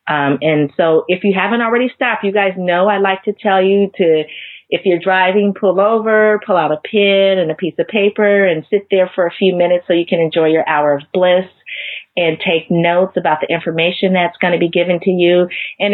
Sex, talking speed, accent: female, 225 wpm, American